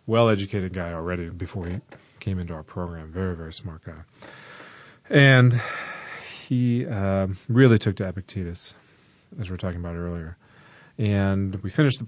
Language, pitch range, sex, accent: English, 90-115 Hz, male, American